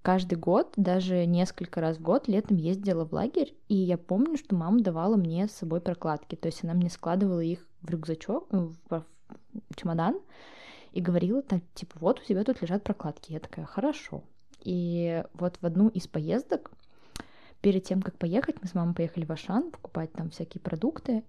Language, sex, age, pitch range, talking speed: Russian, female, 20-39, 170-215 Hz, 180 wpm